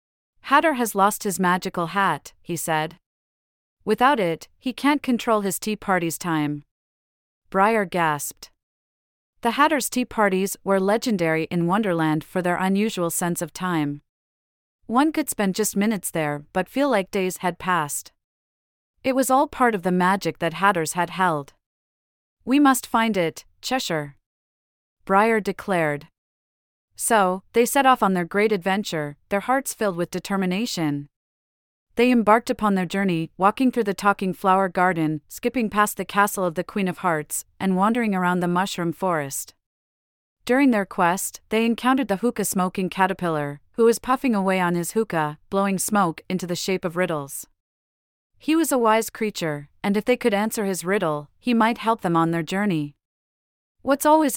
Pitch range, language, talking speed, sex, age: 160-220 Hz, English, 160 wpm, female, 40-59